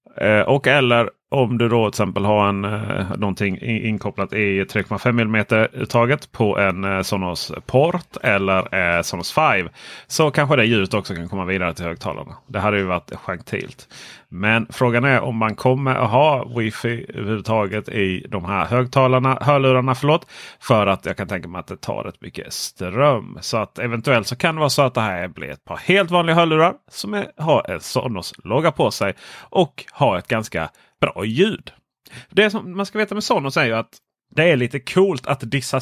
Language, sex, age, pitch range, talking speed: Swedish, male, 30-49, 105-135 Hz, 190 wpm